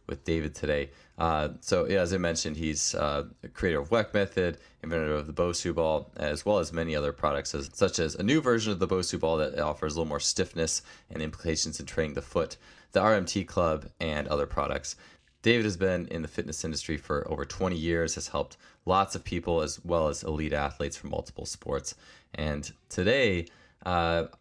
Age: 20-39